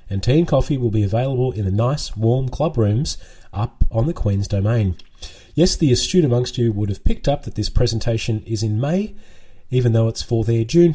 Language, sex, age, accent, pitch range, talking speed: English, male, 30-49, Australian, 105-125 Hz, 215 wpm